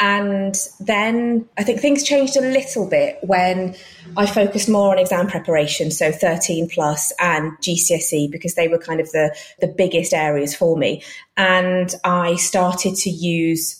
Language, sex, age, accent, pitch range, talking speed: English, female, 20-39, British, 160-195 Hz, 160 wpm